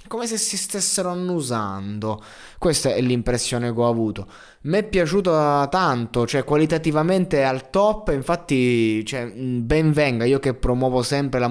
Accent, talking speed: native, 150 wpm